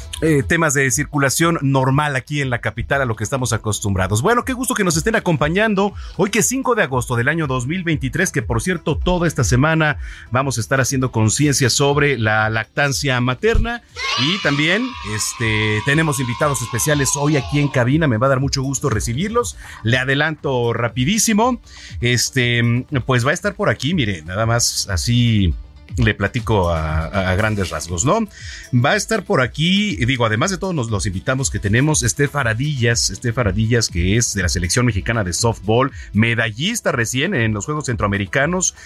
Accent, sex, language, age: Mexican, male, Spanish, 40-59